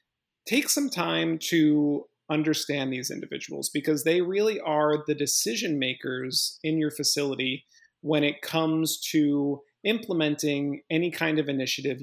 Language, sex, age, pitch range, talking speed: English, male, 30-49, 140-165 Hz, 130 wpm